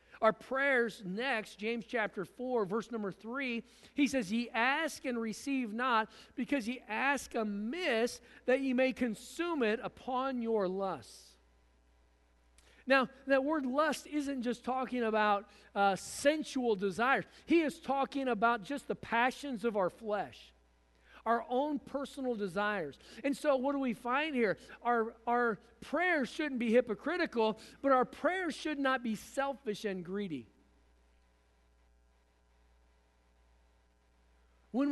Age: 50-69